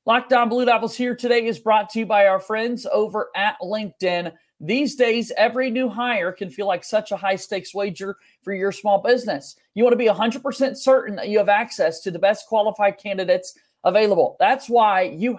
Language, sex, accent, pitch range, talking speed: English, male, American, 200-245 Hz, 195 wpm